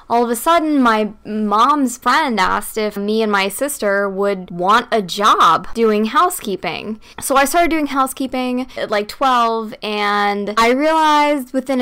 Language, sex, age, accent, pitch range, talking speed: English, female, 10-29, American, 220-280 Hz, 155 wpm